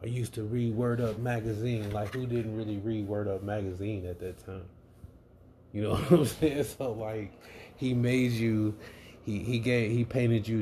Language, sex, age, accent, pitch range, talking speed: English, male, 20-39, American, 95-115 Hz, 190 wpm